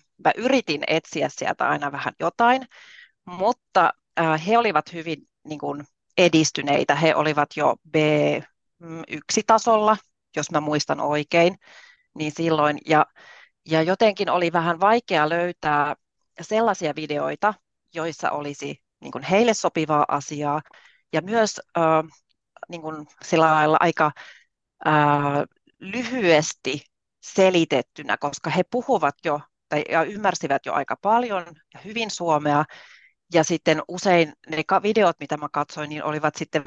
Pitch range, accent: 155-200 Hz, native